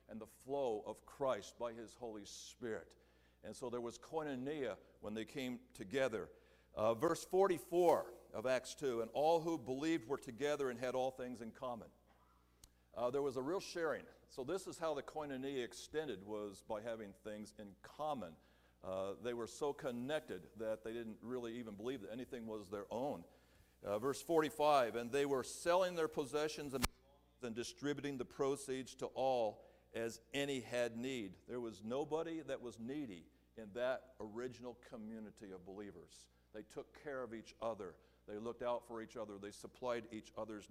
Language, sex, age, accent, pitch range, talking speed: English, male, 50-69, American, 110-145 Hz, 175 wpm